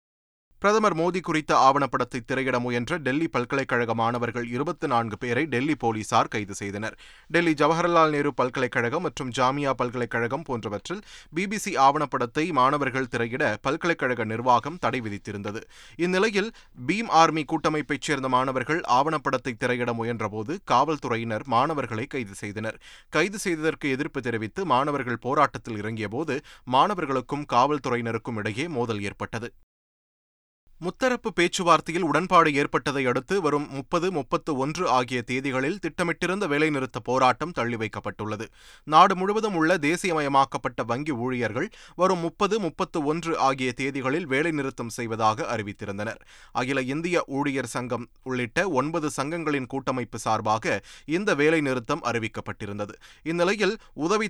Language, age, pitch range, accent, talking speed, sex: Tamil, 30-49, 120-160 Hz, native, 110 wpm, male